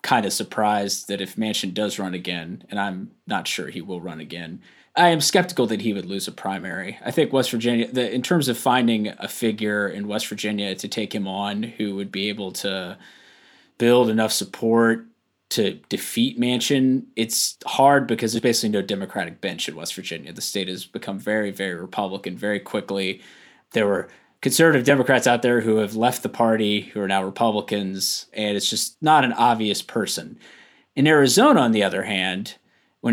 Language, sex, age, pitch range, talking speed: English, male, 20-39, 100-120 Hz, 185 wpm